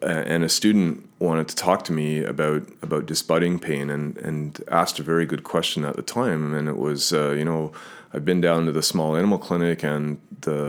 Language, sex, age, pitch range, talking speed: English, male, 30-49, 75-80 Hz, 215 wpm